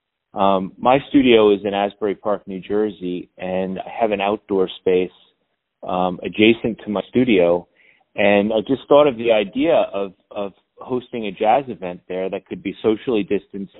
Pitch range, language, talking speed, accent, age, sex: 100-115 Hz, English, 170 wpm, American, 30-49, male